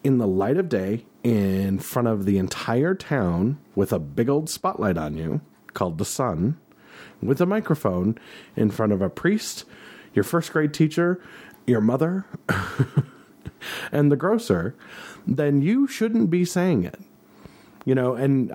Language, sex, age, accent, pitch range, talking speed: English, male, 30-49, American, 115-150 Hz, 150 wpm